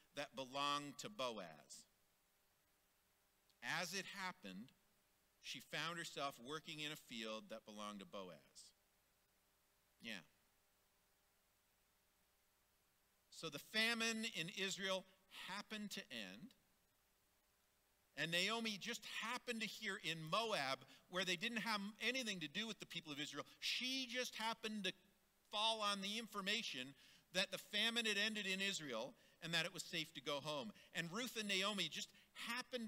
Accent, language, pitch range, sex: American, English, 130-205 Hz, male